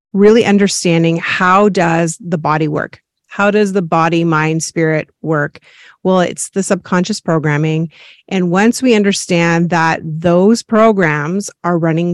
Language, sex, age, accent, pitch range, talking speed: English, female, 30-49, American, 165-205 Hz, 140 wpm